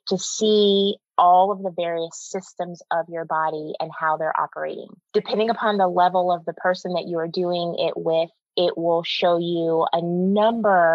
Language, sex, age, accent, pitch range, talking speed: English, female, 20-39, American, 160-180 Hz, 180 wpm